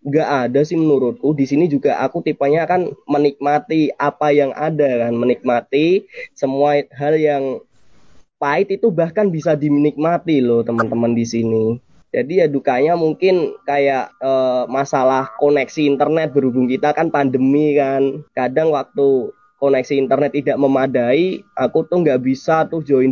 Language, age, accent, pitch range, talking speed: Indonesian, 20-39, native, 130-150 Hz, 140 wpm